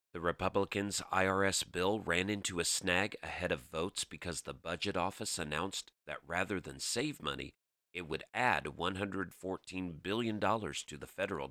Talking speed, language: 150 wpm, English